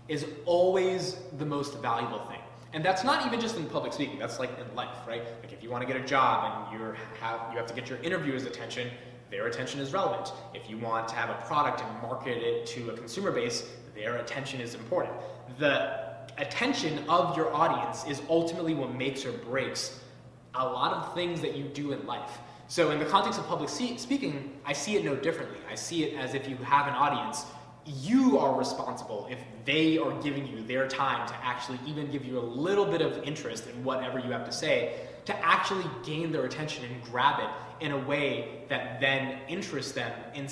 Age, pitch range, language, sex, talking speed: 20-39, 120-150 Hz, English, male, 205 wpm